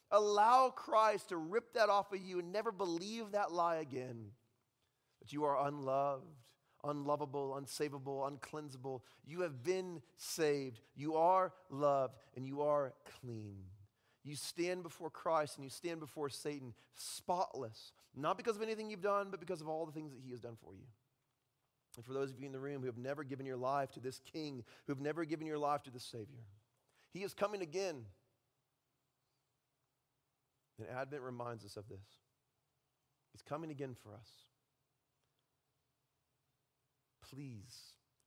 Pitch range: 125-150 Hz